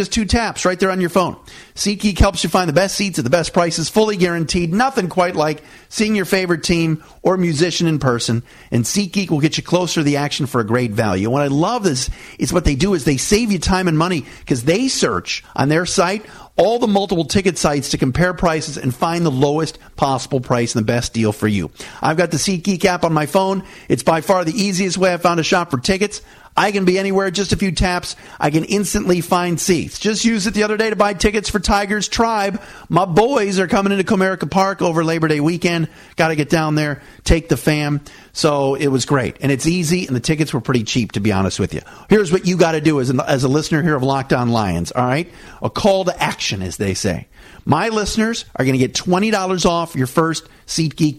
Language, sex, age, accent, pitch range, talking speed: English, male, 40-59, American, 145-195 Hz, 235 wpm